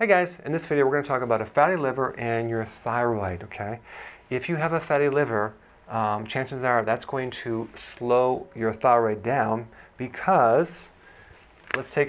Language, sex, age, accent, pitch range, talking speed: English, male, 40-59, American, 115-140 Hz, 180 wpm